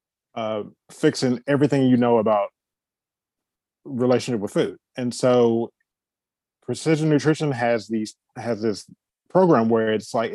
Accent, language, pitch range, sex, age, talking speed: American, English, 110-130 Hz, male, 20-39, 120 wpm